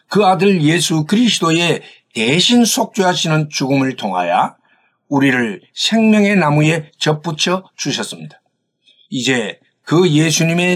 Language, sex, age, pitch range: Korean, male, 60-79, 145-195 Hz